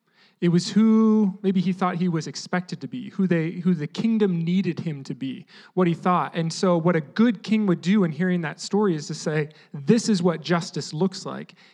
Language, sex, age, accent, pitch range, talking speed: English, male, 30-49, American, 165-200 Hz, 225 wpm